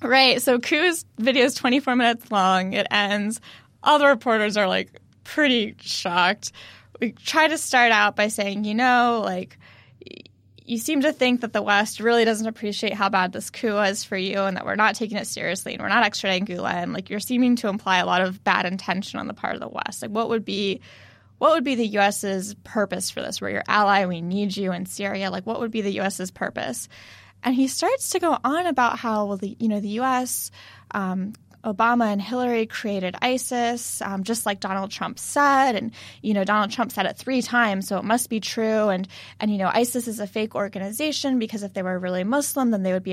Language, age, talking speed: English, 10-29, 225 wpm